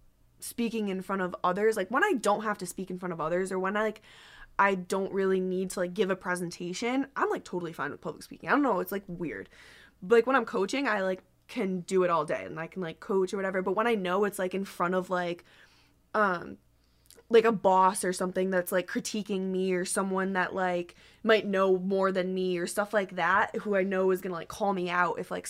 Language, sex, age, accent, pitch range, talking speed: English, female, 20-39, American, 180-205 Hz, 245 wpm